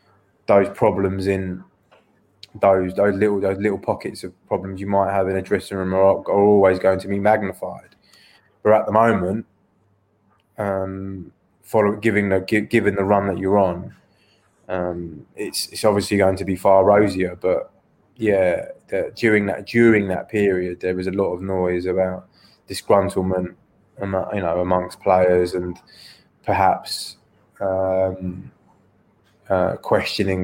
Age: 20-39